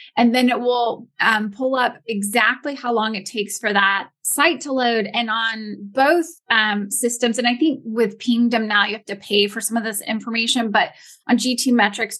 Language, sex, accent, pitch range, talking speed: English, female, American, 205-240 Hz, 195 wpm